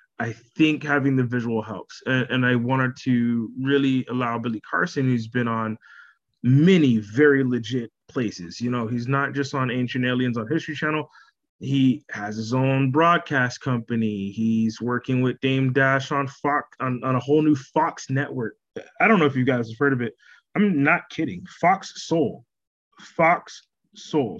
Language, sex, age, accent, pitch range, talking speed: English, male, 20-39, American, 125-150 Hz, 170 wpm